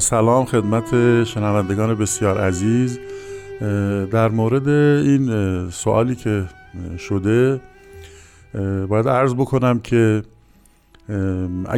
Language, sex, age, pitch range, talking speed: Persian, male, 50-69, 90-115 Hz, 75 wpm